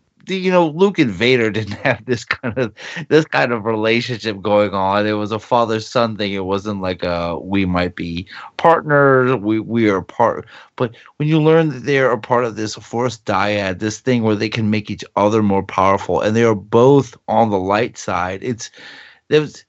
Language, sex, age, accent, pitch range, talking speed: English, male, 30-49, American, 100-135 Hz, 205 wpm